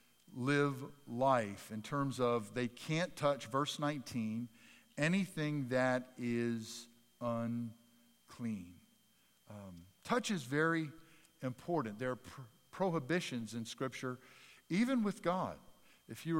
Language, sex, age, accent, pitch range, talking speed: English, male, 50-69, American, 110-150 Hz, 105 wpm